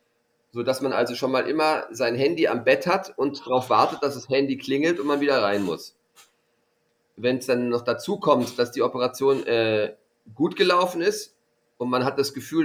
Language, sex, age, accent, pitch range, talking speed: German, male, 40-59, German, 115-135 Hz, 200 wpm